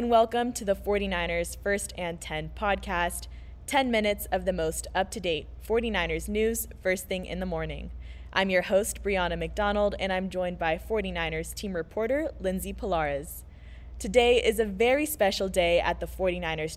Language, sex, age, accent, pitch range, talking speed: English, female, 20-39, American, 170-205 Hz, 160 wpm